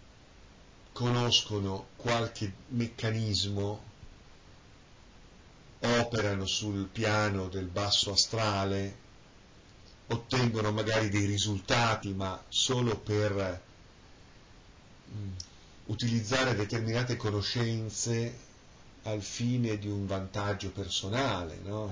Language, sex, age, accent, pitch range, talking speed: Italian, male, 50-69, native, 95-110 Hz, 70 wpm